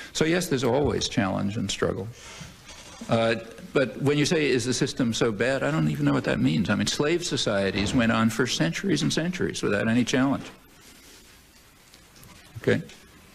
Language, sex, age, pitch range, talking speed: English, male, 60-79, 110-145 Hz, 170 wpm